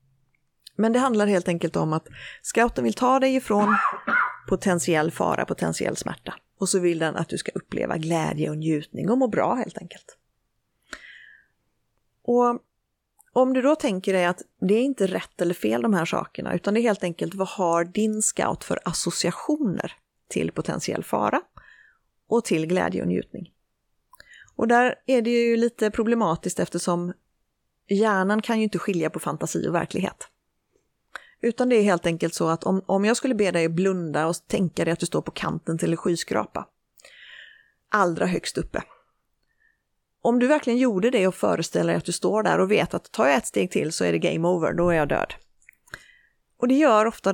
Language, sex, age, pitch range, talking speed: Swedish, female, 30-49, 170-235 Hz, 185 wpm